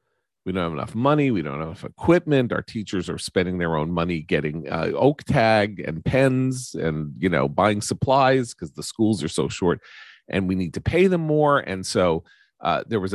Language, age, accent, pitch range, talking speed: English, 40-59, American, 90-130 Hz, 210 wpm